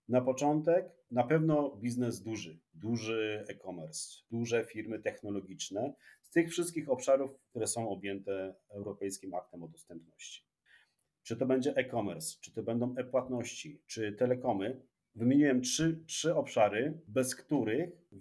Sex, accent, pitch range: male, native, 105-145 Hz